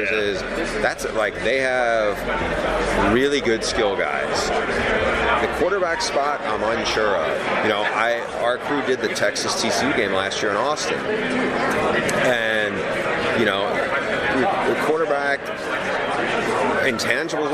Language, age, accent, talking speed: English, 30-49, American, 120 wpm